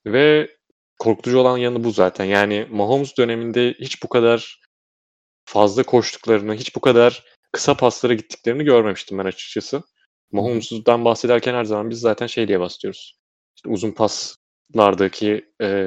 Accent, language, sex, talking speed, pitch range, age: native, Turkish, male, 135 wpm, 100-130 Hz, 30-49